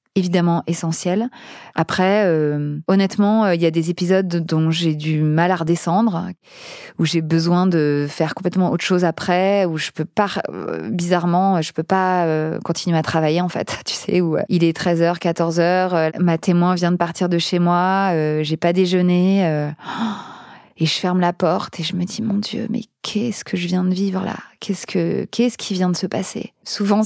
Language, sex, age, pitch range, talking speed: French, female, 20-39, 165-195 Hz, 200 wpm